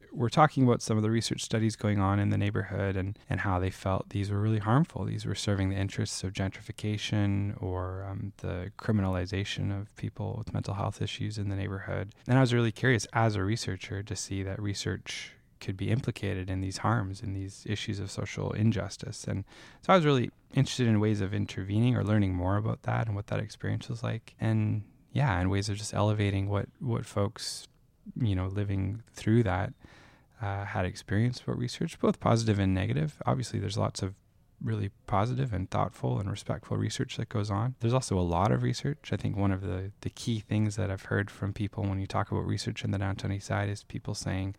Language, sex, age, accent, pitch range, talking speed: English, male, 10-29, American, 95-115 Hz, 210 wpm